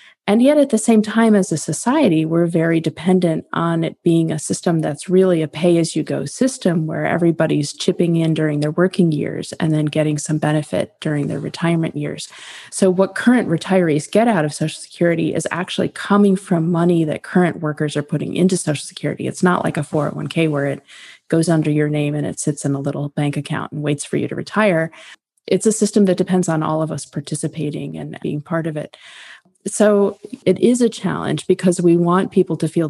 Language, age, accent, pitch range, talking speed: English, 30-49, American, 155-185 Hz, 205 wpm